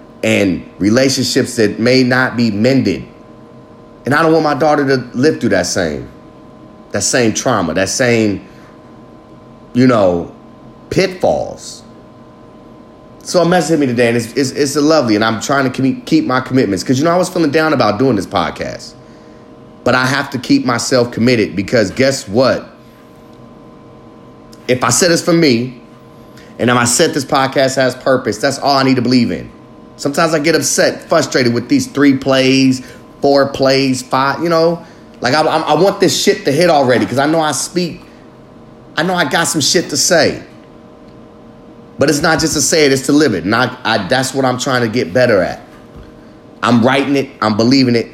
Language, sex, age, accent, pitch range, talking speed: English, male, 30-49, American, 125-145 Hz, 190 wpm